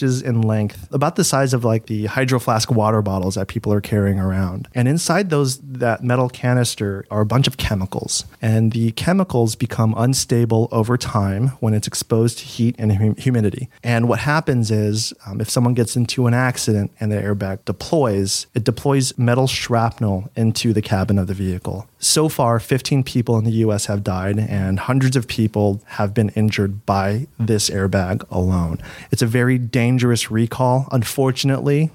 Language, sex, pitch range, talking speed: English, male, 105-125 Hz, 175 wpm